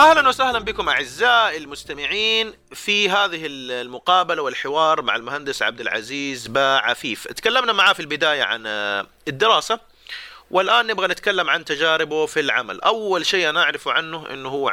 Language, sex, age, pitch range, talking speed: Arabic, male, 30-49, 115-180 Hz, 135 wpm